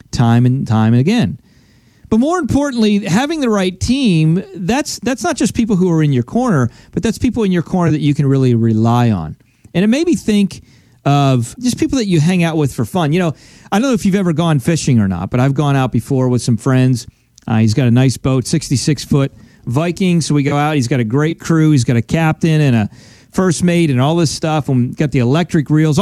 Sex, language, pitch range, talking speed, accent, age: male, English, 125-180 Hz, 240 wpm, American, 40-59